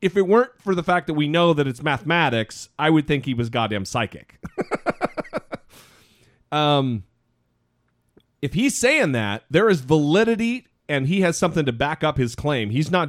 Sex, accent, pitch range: male, American, 125-180 Hz